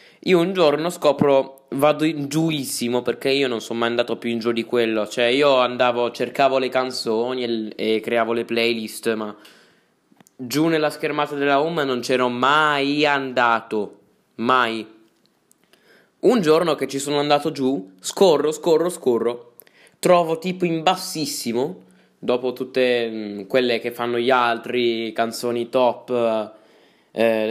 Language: Italian